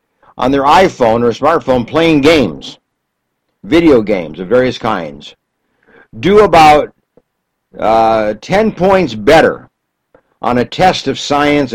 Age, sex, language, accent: 60-79, male, English, American